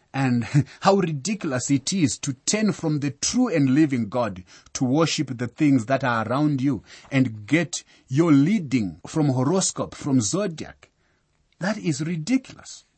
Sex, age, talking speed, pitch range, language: male, 30-49, 150 wpm, 110-150 Hz, English